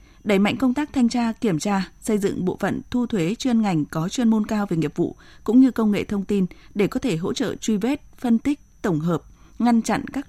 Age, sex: 20-39, female